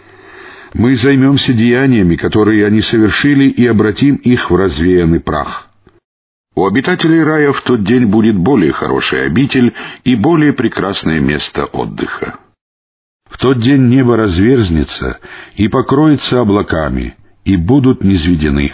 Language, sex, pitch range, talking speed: Russian, male, 95-130 Hz, 120 wpm